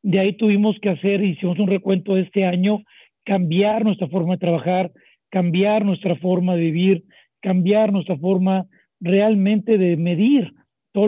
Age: 50-69